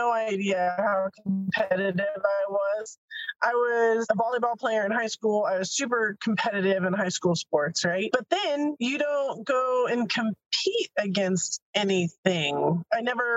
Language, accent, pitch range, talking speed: English, American, 185-250 Hz, 155 wpm